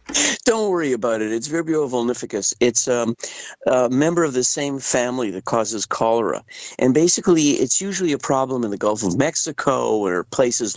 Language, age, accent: English, 50-69, American